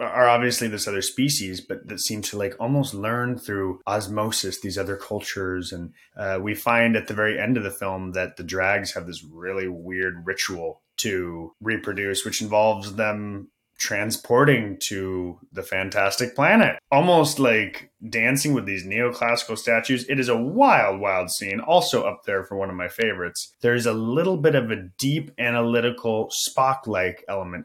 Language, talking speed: English, 165 wpm